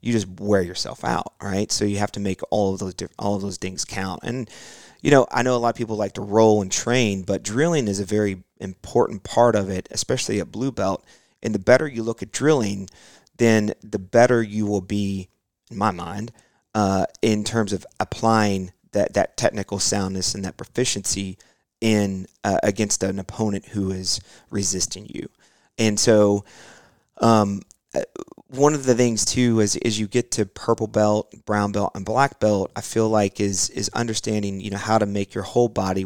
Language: English